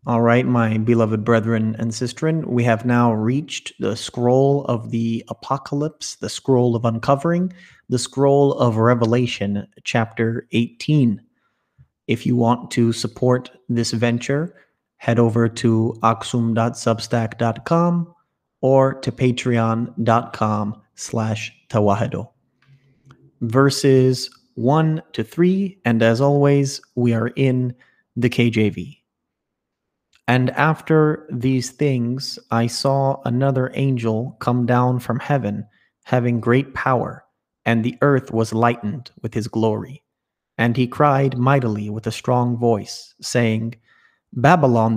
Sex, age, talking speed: male, 30-49, 115 wpm